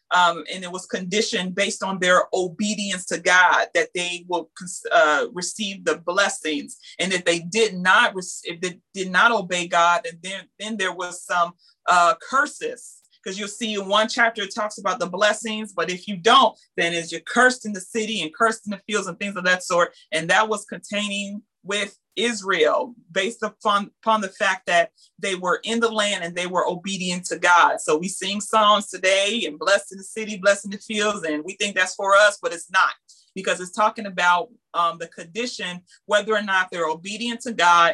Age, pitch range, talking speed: 30-49, 175-215 Hz, 200 wpm